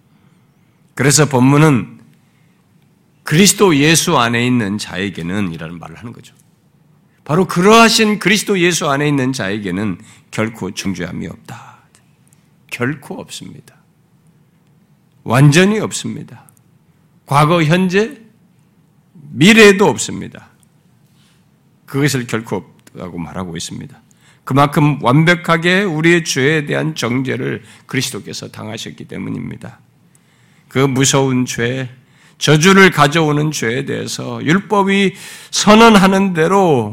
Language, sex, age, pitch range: Korean, male, 50-69, 125-175 Hz